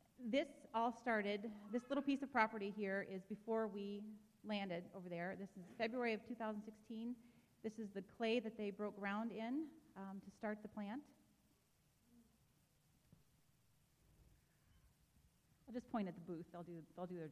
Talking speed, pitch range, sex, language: 155 wpm, 185-230 Hz, female, English